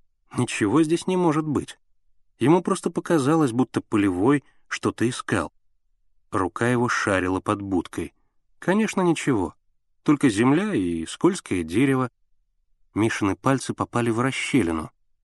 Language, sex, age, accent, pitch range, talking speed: Russian, male, 30-49, native, 100-145 Hz, 115 wpm